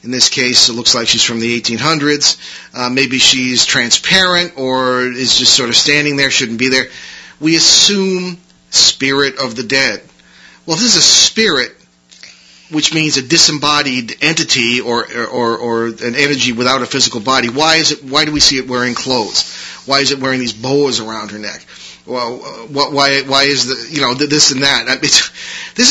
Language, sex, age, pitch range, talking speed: English, male, 40-59, 125-155 Hz, 190 wpm